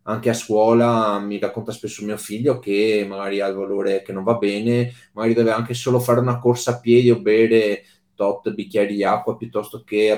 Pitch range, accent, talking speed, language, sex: 100-120 Hz, native, 205 wpm, Italian, male